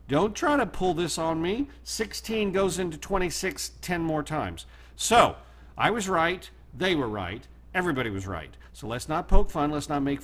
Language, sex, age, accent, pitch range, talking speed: English, male, 50-69, American, 105-155 Hz, 190 wpm